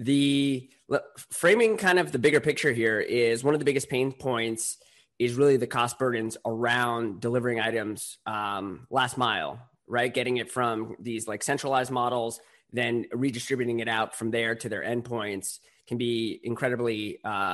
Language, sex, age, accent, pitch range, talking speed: English, male, 20-39, American, 115-130 Hz, 160 wpm